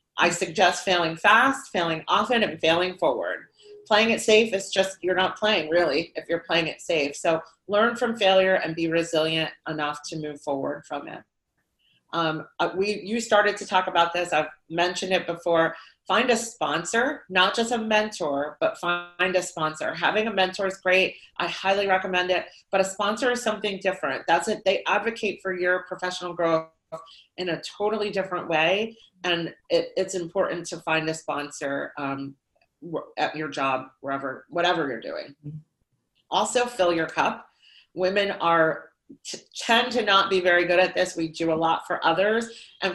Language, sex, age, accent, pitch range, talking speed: English, female, 30-49, American, 165-200 Hz, 170 wpm